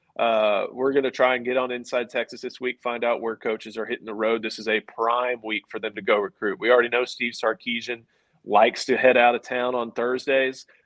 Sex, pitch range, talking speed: male, 110-130 Hz, 240 wpm